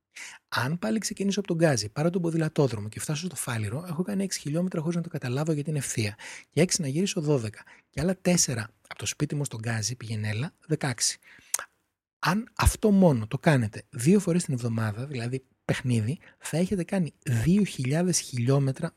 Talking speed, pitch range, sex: 175 wpm, 125-185 Hz, male